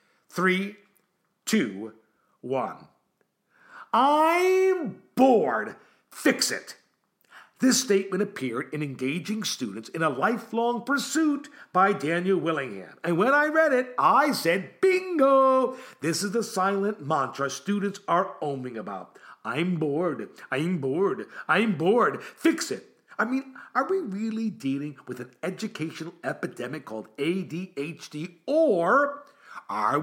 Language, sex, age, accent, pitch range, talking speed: English, male, 50-69, American, 170-255 Hz, 120 wpm